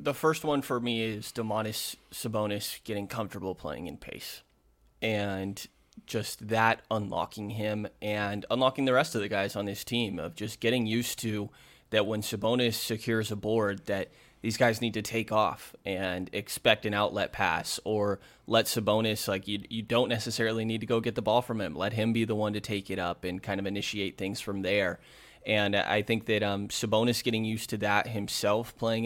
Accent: American